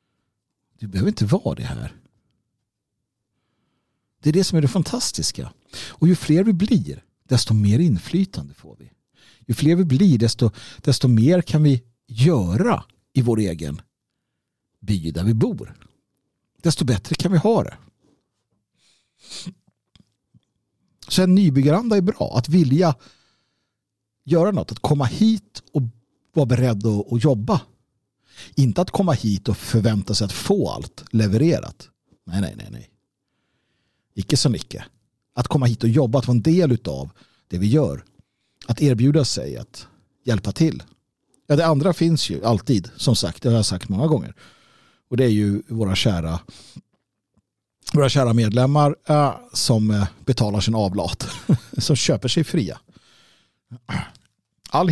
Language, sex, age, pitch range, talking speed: Swedish, male, 60-79, 110-155 Hz, 145 wpm